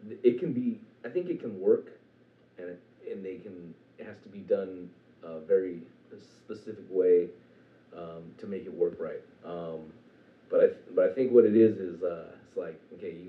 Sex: male